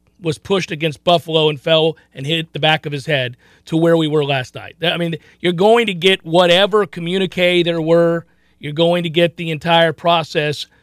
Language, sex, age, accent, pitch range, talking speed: English, male, 40-59, American, 165-250 Hz, 200 wpm